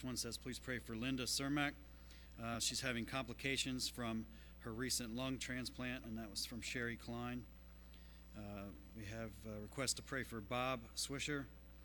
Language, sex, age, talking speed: English, male, 40-59, 160 wpm